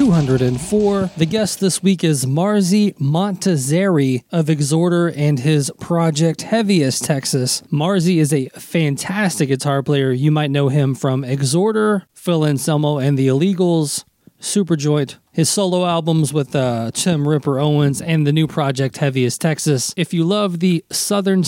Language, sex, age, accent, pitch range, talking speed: English, male, 20-39, American, 145-180 Hz, 150 wpm